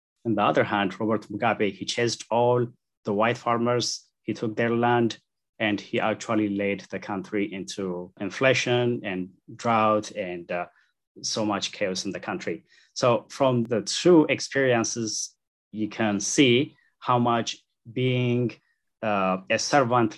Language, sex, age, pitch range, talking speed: English, male, 30-49, 100-120 Hz, 145 wpm